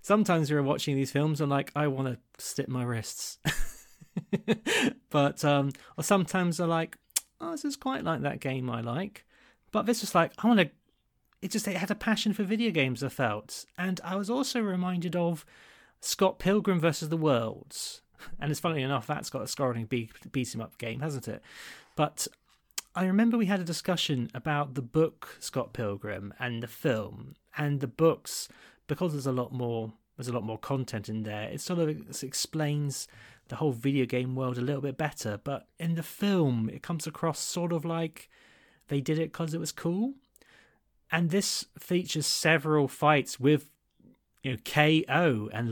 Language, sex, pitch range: English, male, 125-175 Hz